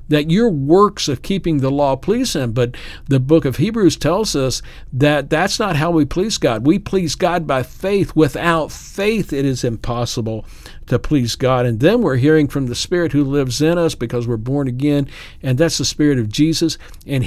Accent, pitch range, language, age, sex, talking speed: American, 125-155 Hz, English, 50-69, male, 200 wpm